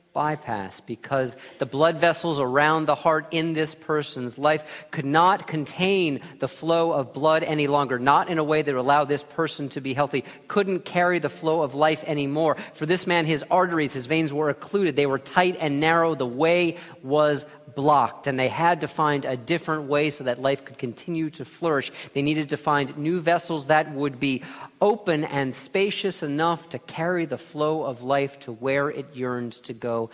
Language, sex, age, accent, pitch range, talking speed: English, male, 40-59, American, 130-160 Hz, 195 wpm